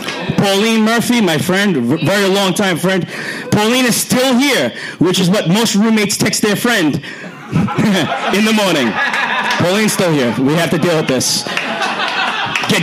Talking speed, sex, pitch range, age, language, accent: 155 wpm, male, 185-235 Hz, 40-59, English, American